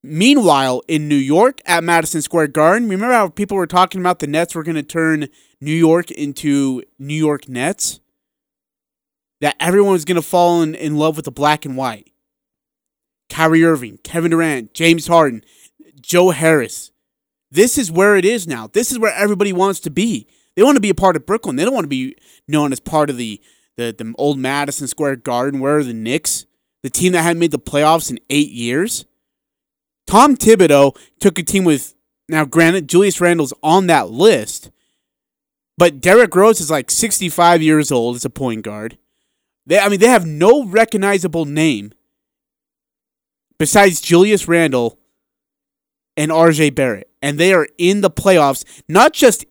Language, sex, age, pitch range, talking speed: English, male, 30-49, 145-195 Hz, 175 wpm